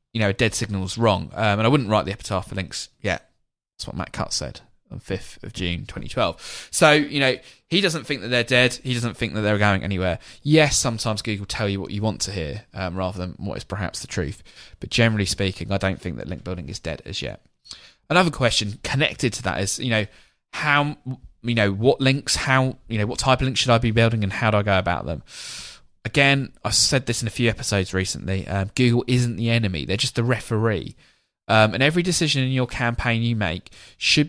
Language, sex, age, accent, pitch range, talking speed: English, male, 20-39, British, 95-125 Hz, 230 wpm